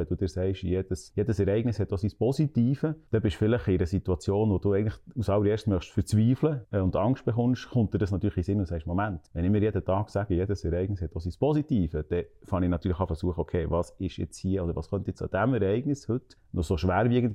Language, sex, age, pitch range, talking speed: German, male, 30-49, 90-110 Hz, 250 wpm